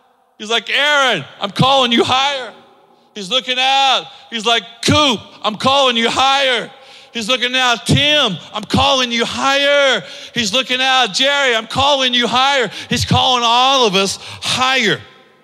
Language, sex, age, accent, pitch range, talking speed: English, male, 40-59, American, 175-240 Hz, 150 wpm